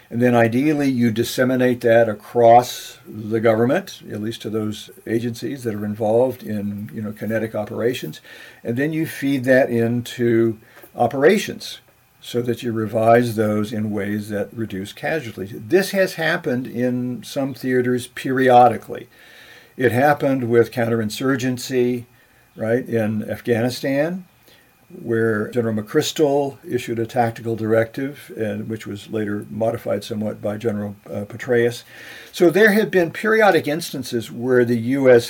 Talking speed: 135 wpm